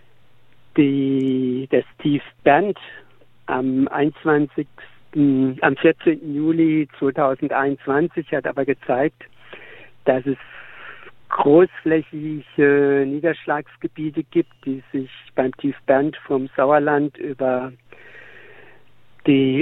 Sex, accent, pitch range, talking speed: male, German, 135-150 Hz, 70 wpm